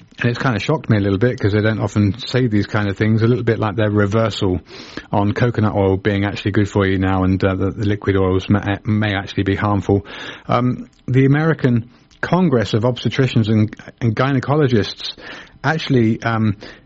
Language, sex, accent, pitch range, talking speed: English, male, British, 100-125 Hz, 195 wpm